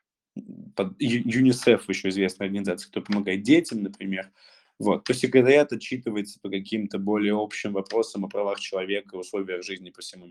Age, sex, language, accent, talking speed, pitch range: 20-39, male, Russian, native, 155 wpm, 105-135 Hz